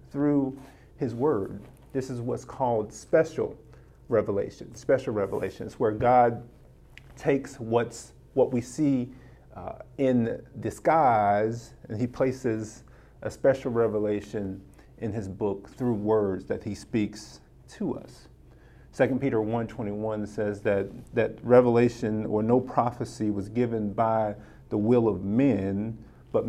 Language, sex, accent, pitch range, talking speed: English, male, American, 110-145 Hz, 125 wpm